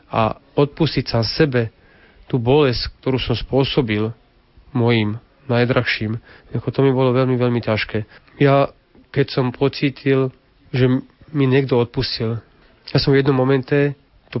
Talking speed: 135 wpm